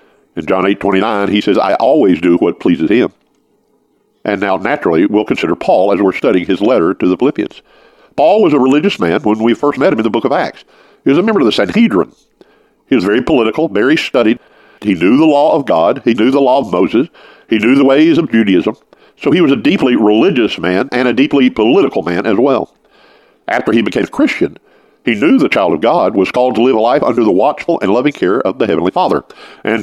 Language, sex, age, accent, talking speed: English, male, 50-69, American, 230 wpm